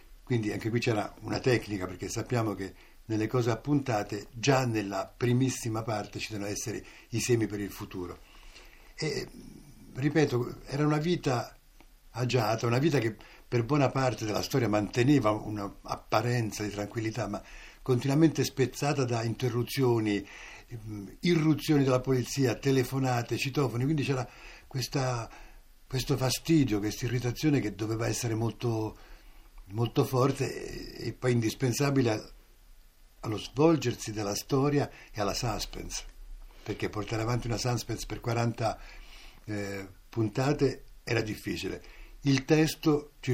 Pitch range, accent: 105-140 Hz, native